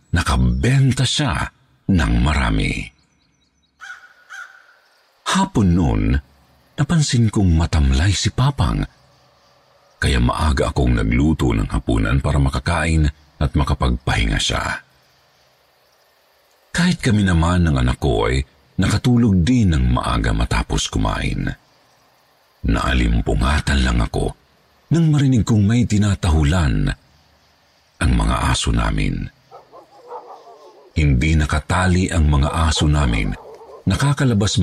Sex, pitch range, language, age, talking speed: male, 75-120 Hz, Filipino, 50-69, 95 wpm